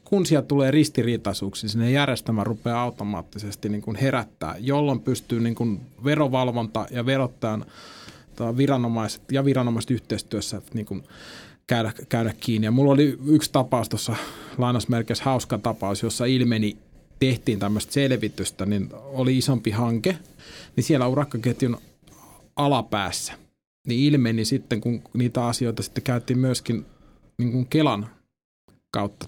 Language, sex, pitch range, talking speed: Finnish, male, 105-130 Hz, 115 wpm